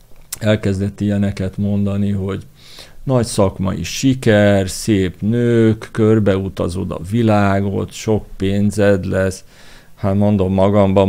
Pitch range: 95-115 Hz